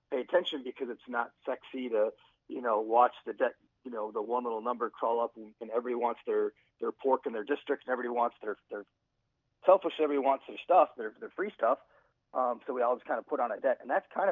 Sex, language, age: male, English, 40-59